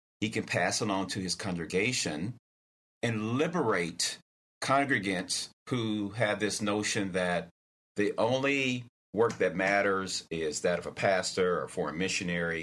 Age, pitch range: 40-59, 90-115 Hz